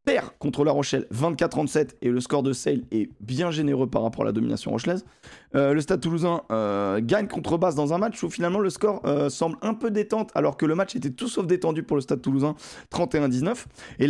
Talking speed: 225 wpm